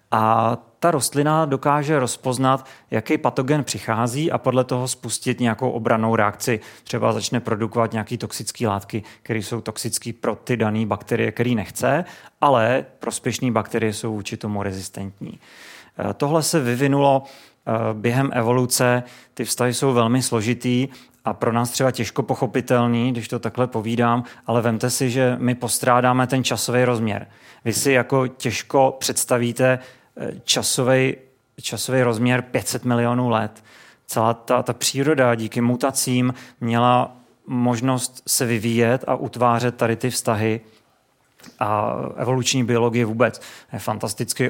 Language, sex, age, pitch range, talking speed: Czech, male, 30-49, 115-130 Hz, 130 wpm